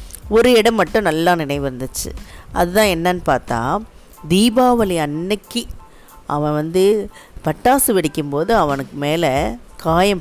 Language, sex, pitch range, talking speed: Tamil, female, 145-195 Hz, 105 wpm